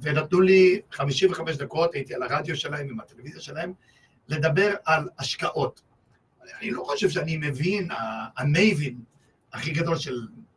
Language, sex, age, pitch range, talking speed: Hebrew, male, 50-69, 135-185 Hz, 130 wpm